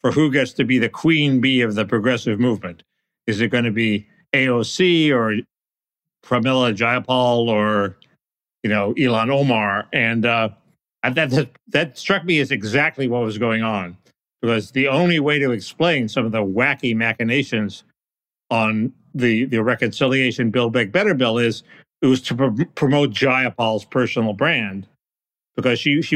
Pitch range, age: 115-145 Hz, 50-69